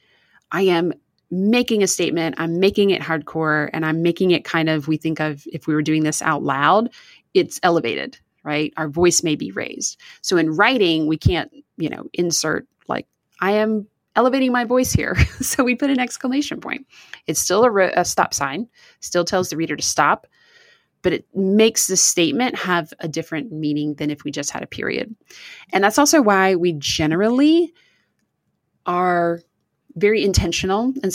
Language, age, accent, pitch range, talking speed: English, 30-49, American, 160-225 Hz, 175 wpm